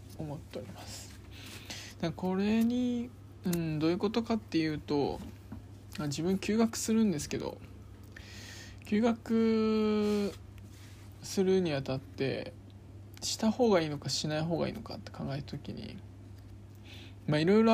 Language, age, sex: Japanese, 20-39, male